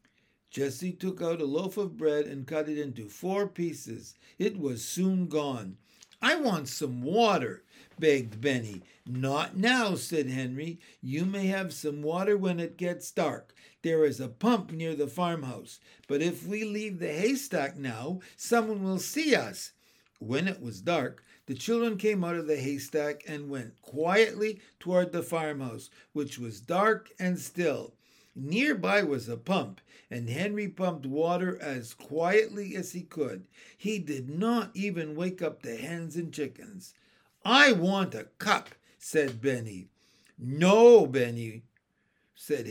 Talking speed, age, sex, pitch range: 150 wpm, 60-79, male, 140-195 Hz